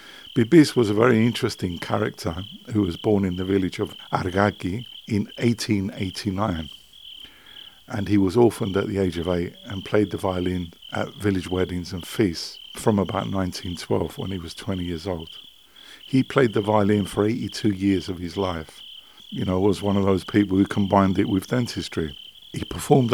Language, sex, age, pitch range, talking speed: English, male, 50-69, 90-110 Hz, 175 wpm